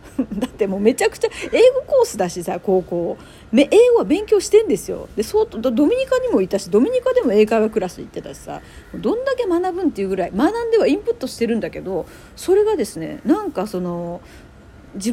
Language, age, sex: Japanese, 40-59, female